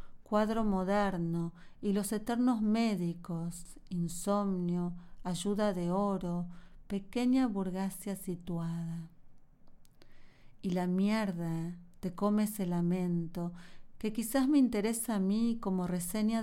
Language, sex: Spanish, female